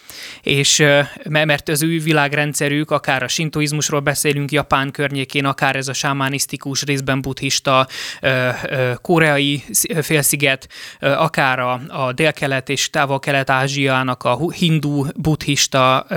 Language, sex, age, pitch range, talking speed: Hungarian, male, 20-39, 130-150 Hz, 95 wpm